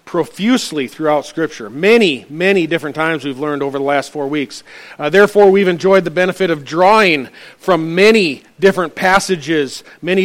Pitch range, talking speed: 160-220 Hz, 160 wpm